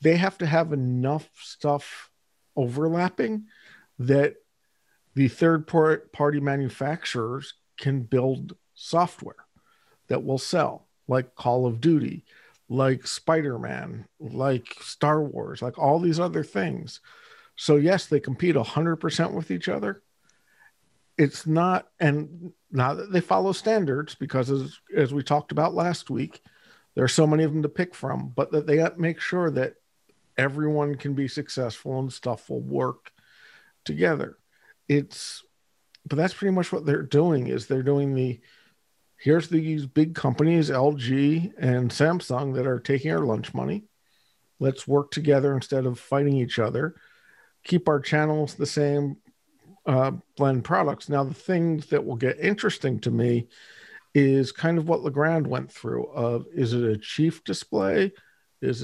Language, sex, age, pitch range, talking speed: English, male, 50-69, 130-165 Hz, 145 wpm